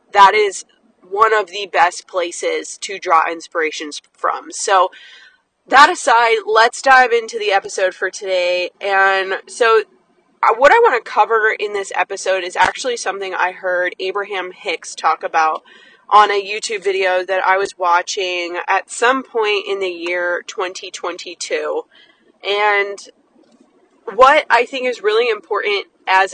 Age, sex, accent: 20-39, female, American